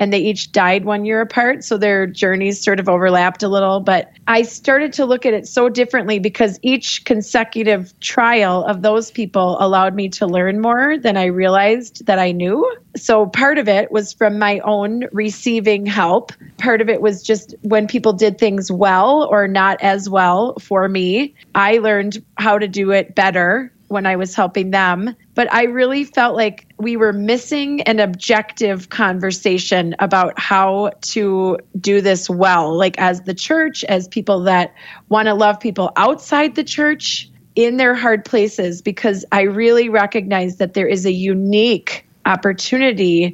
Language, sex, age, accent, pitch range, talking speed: English, female, 30-49, American, 190-225 Hz, 175 wpm